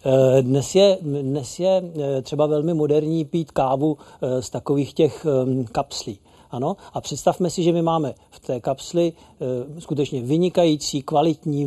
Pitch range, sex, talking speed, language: 135-155 Hz, male, 135 wpm, Czech